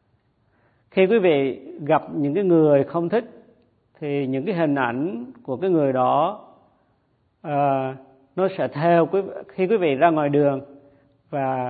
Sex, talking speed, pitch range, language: male, 150 wpm, 130-165 Hz, Vietnamese